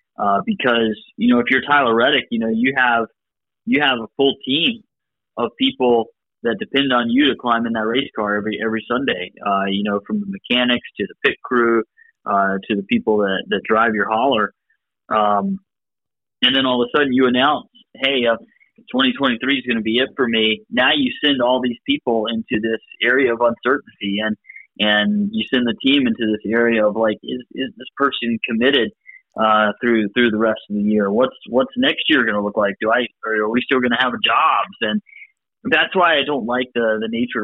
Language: English